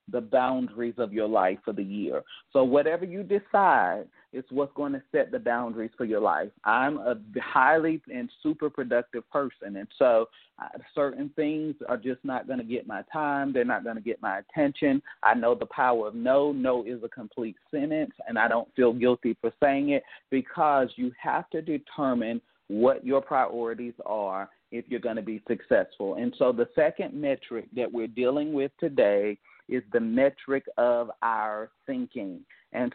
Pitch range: 115-145 Hz